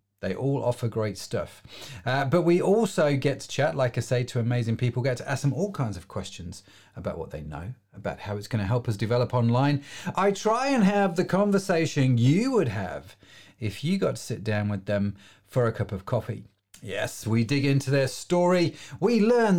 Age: 40-59